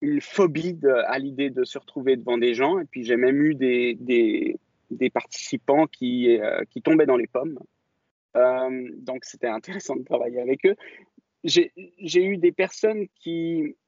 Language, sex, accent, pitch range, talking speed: French, male, French, 130-195 Hz, 175 wpm